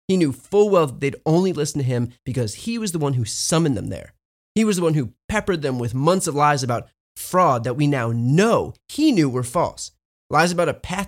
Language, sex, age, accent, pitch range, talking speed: English, male, 30-49, American, 120-170 Hz, 240 wpm